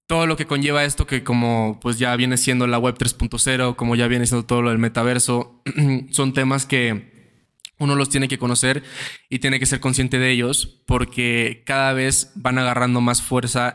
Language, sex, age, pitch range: Spanish, male, 10-29, 120-135 Hz